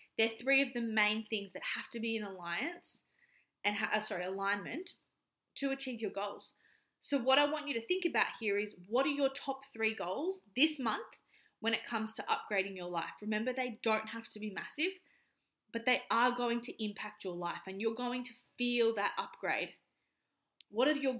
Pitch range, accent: 205-270 Hz, Australian